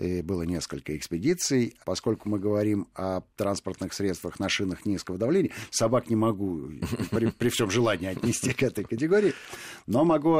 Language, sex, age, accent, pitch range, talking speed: Russian, male, 50-69, native, 90-120 Hz, 150 wpm